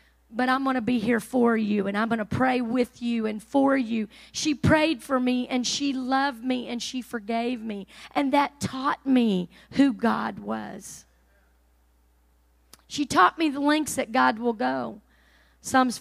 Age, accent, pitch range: 40-59, American, 220-280 Hz